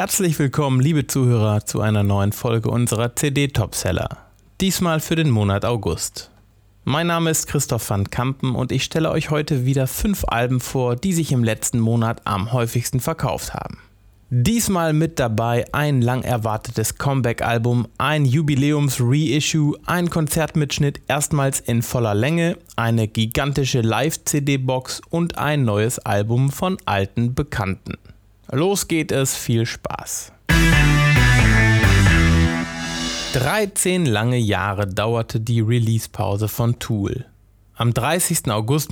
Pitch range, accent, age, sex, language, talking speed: 115-150 Hz, German, 30-49, male, German, 125 wpm